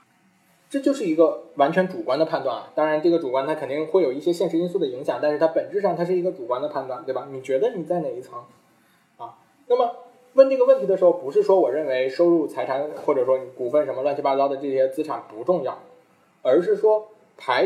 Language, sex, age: Chinese, male, 20-39